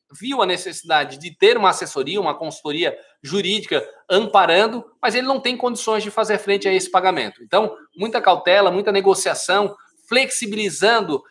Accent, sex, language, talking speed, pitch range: Brazilian, male, Portuguese, 150 wpm, 160-220 Hz